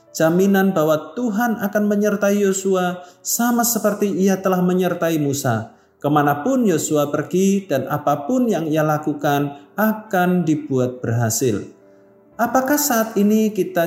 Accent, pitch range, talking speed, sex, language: native, 145-200 Hz, 115 wpm, male, Indonesian